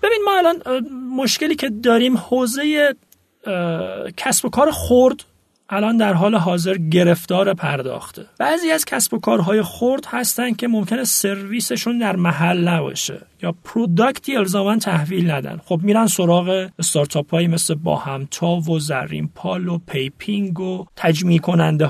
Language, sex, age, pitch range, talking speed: Persian, male, 40-59, 175-245 Hz, 130 wpm